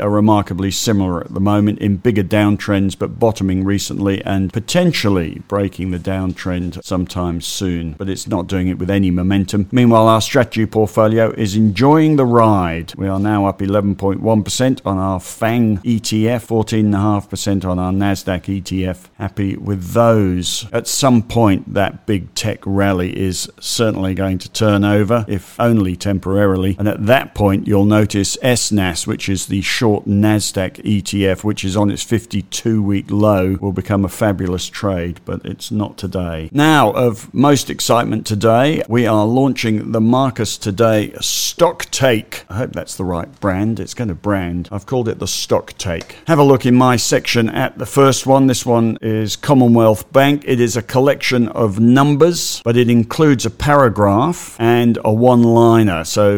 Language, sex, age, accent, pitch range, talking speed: English, male, 50-69, British, 95-115 Hz, 165 wpm